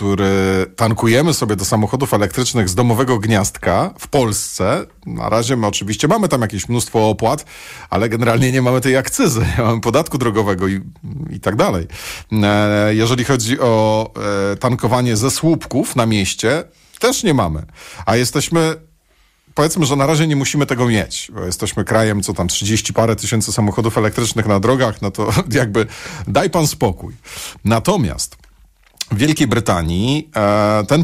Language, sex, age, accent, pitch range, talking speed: Polish, male, 40-59, native, 105-145 Hz, 150 wpm